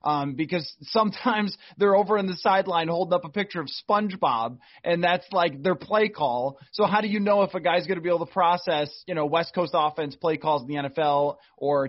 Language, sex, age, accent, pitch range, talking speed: English, male, 30-49, American, 150-185 Hz, 225 wpm